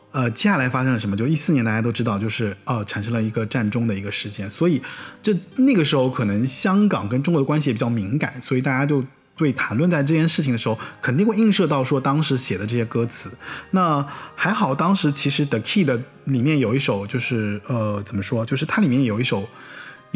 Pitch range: 115-145 Hz